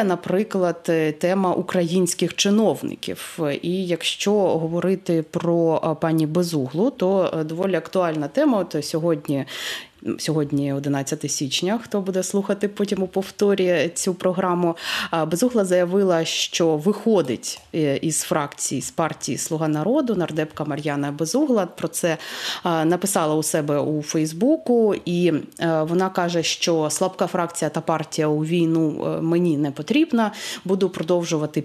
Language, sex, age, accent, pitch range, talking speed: Ukrainian, female, 20-39, native, 160-200 Hz, 120 wpm